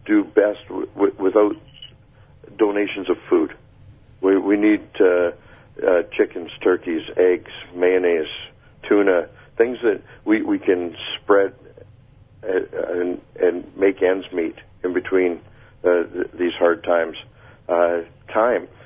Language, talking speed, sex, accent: English, 120 wpm, male, American